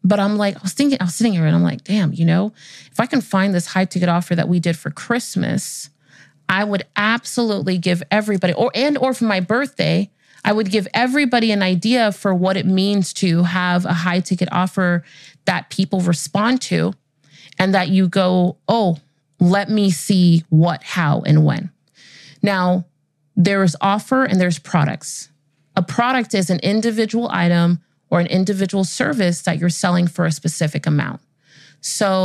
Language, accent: English, American